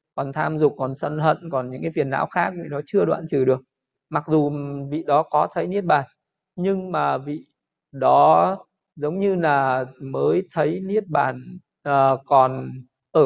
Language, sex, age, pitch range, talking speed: Vietnamese, male, 20-39, 140-185 Hz, 175 wpm